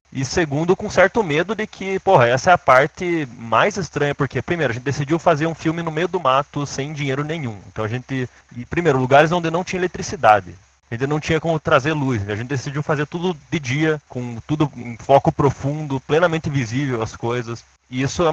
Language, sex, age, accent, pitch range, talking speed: Portuguese, male, 20-39, Brazilian, 125-160 Hz, 215 wpm